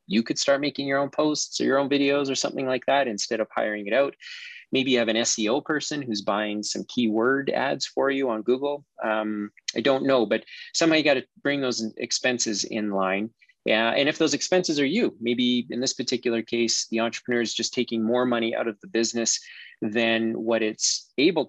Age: 30-49